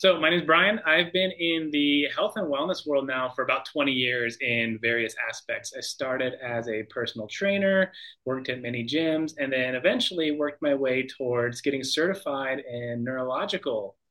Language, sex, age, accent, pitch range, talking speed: English, male, 30-49, American, 120-160 Hz, 180 wpm